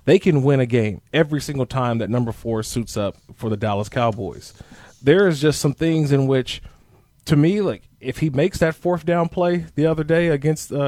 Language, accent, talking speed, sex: English, American, 215 wpm, male